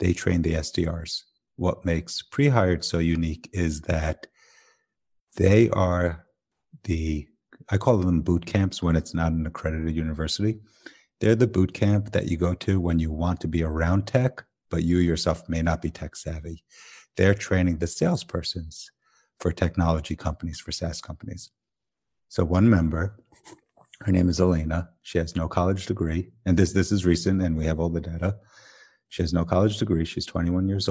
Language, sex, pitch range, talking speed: English, male, 85-95 Hz, 175 wpm